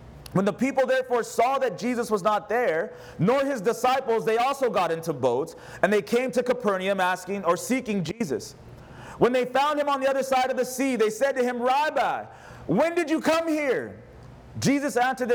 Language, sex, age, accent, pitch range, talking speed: English, male, 30-49, American, 180-255 Hz, 195 wpm